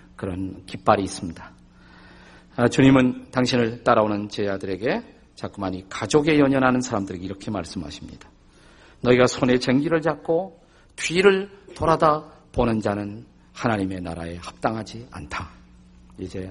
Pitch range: 90-135 Hz